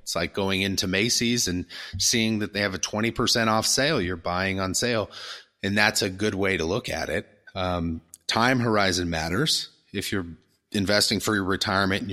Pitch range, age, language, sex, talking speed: 90-115 Hz, 30-49, English, male, 185 wpm